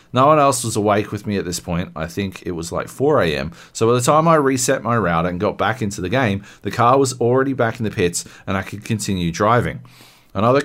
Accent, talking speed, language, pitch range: Australian, 255 wpm, English, 100-140 Hz